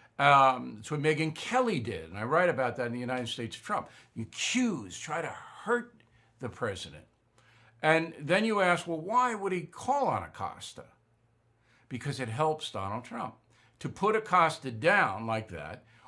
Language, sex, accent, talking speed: English, male, American, 170 wpm